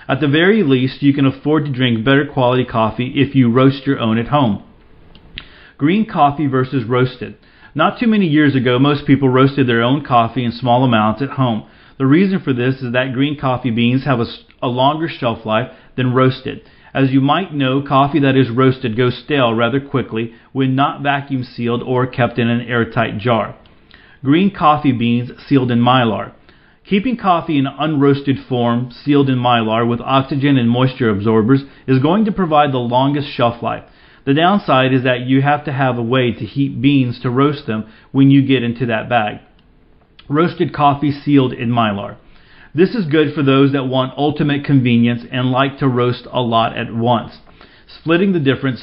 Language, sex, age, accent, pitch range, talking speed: English, male, 40-59, American, 120-140 Hz, 185 wpm